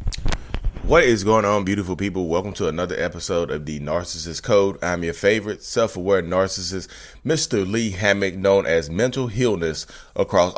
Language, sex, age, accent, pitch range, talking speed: English, male, 20-39, American, 80-110 Hz, 155 wpm